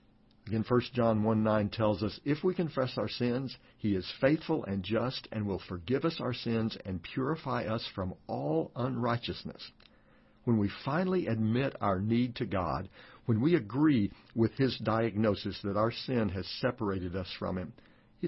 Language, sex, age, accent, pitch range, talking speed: English, male, 50-69, American, 105-135 Hz, 170 wpm